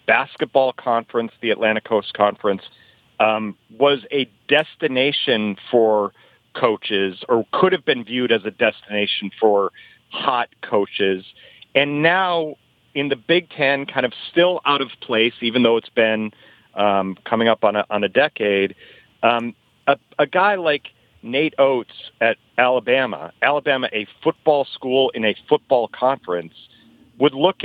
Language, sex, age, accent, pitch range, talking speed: English, male, 40-59, American, 110-145 Hz, 145 wpm